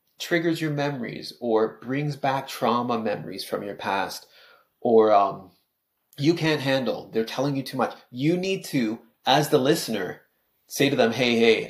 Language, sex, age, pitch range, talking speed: English, male, 30-49, 110-135 Hz, 165 wpm